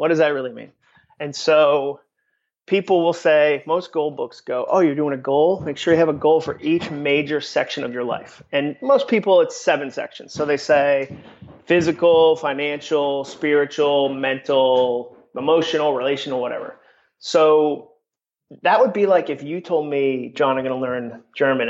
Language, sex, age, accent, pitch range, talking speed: English, male, 30-49, American, 135-160 Hz, 175 wpm